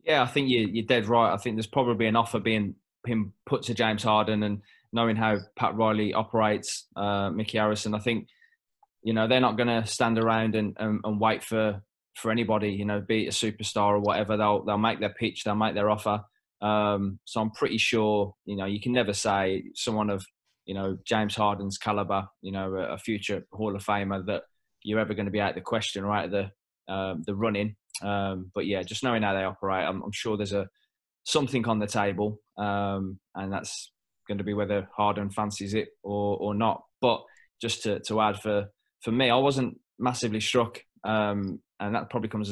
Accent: British